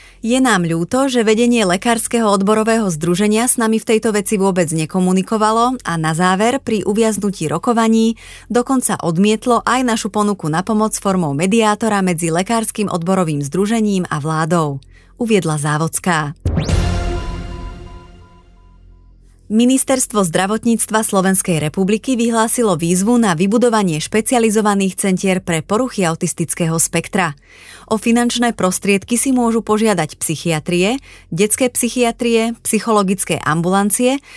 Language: Slovak